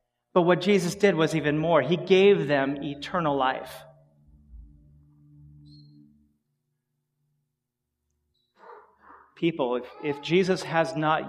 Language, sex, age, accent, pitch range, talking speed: English, male, 30-49, American, 120-165 Hz, 95 wpm